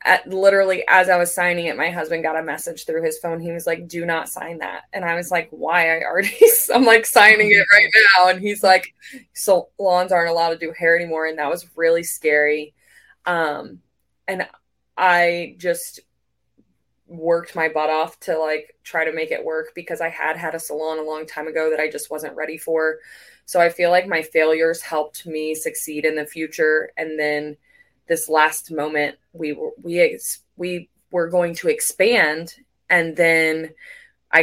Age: 20-39